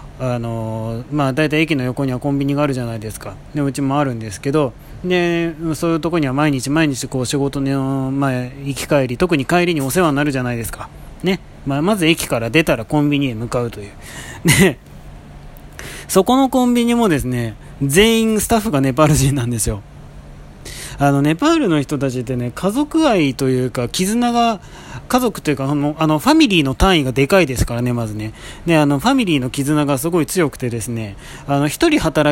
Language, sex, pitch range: Japanese, male, 125-170 Hz